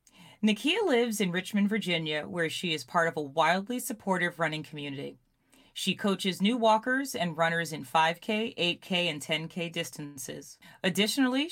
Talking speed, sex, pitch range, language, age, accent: 145 wpm, female, 165-215 Hz, English, 30-49, American